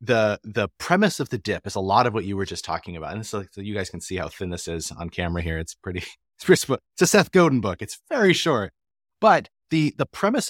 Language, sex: English, male